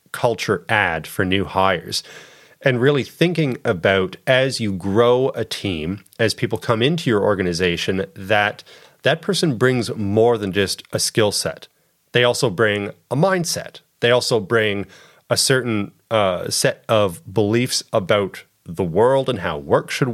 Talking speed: 150 wpm